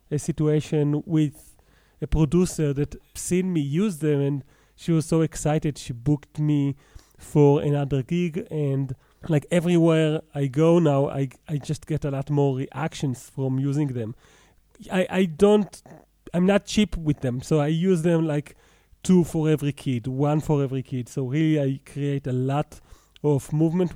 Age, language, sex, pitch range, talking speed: 30-49, English, male, 140-160 Hz, 170 wpm